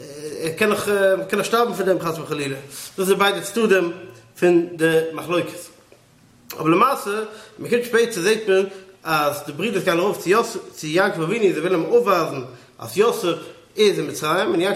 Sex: male